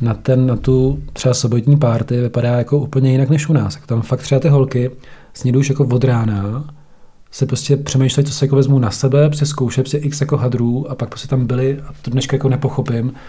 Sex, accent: male, native